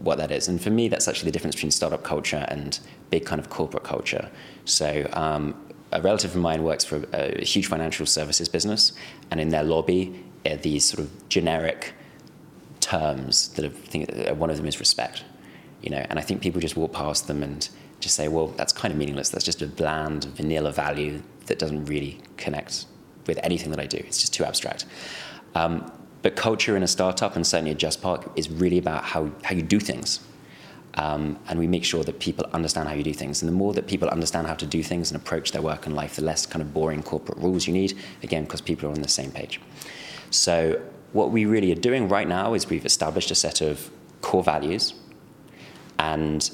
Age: 20-39